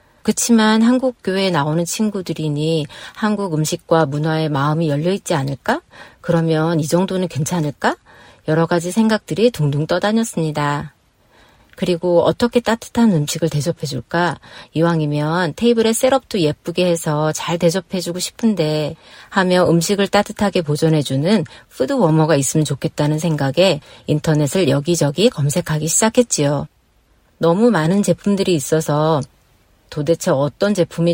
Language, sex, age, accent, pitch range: Korean, female, 40-59, native, 150-190 Hz